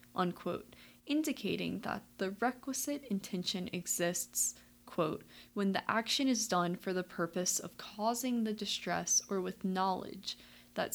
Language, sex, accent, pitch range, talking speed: English, female, American, 180-235 Hz, 130 wpm